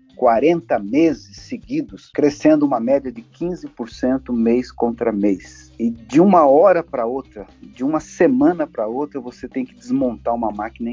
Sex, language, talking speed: male, Portuguese, 155 wpm